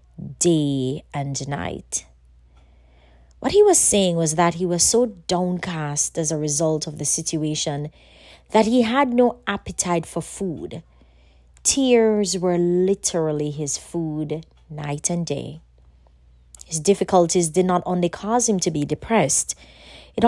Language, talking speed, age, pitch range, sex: English, 135 wpm, 30-49, 140-185 Hz, female